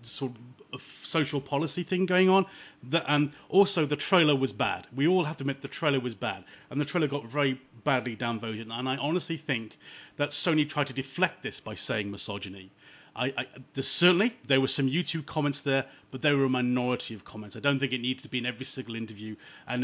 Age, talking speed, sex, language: 30-49, 215 wpm, male, English